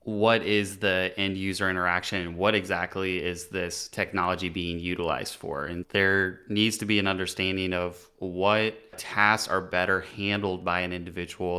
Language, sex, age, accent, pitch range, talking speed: English, male, 20-39, American, 90-105 Hz, 160 wpm